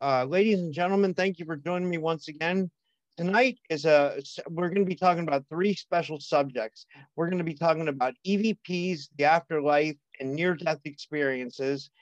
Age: 50-69